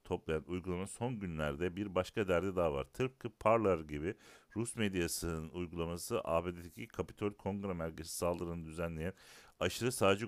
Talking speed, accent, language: 135 wpm, native, Turkish